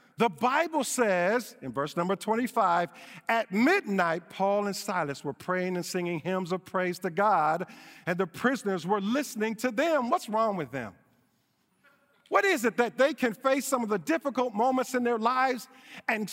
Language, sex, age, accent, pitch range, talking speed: English, male, 50-69, American, 205-280 Hz, 175 wpm